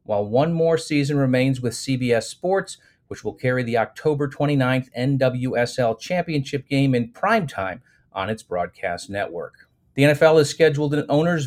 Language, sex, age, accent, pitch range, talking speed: English, male, 40-59, American, 120-145 Hz, 150 wpm